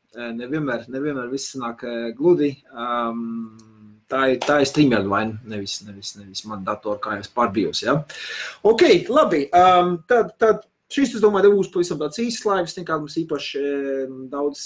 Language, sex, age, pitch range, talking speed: English, male, 30-49, 120-155 Hz, 110 wpm